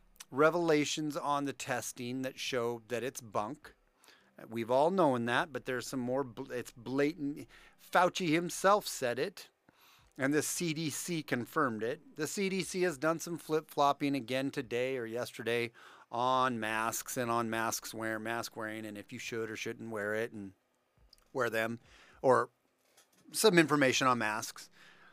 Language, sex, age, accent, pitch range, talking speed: English, male, 40-59, American, 120-155 Hz, 145 wpm